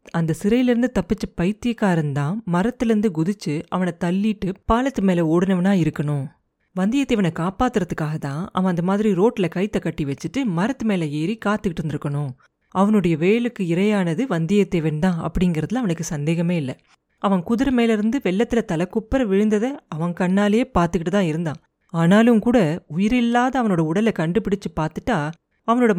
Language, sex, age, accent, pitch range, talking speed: Tamil, female, 30-49, native, 170-220 Hz, 135 wpm